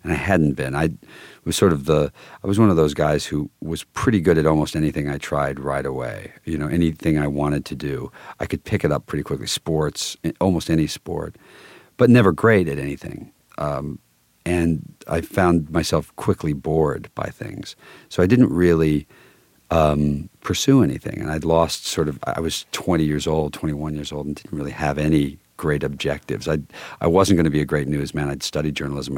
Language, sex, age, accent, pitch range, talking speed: English, male, 50-69, American, 70-80 Hz, 200 wpm